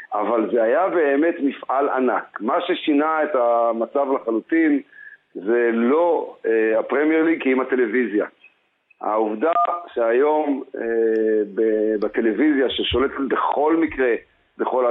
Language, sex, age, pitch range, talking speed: Hebrew, male, 50-69, 120-175 Hz, 100 wpm